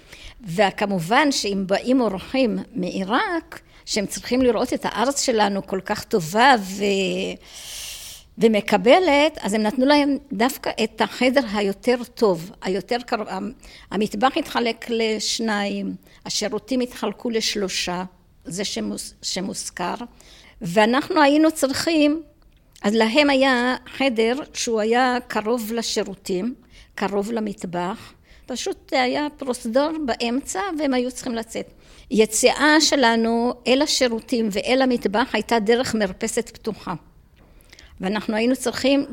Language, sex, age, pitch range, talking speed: Hebrew, female, 50-69, 200-260 Hz, 105 wpm